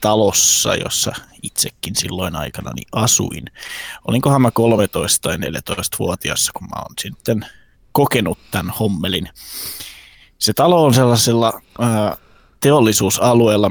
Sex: male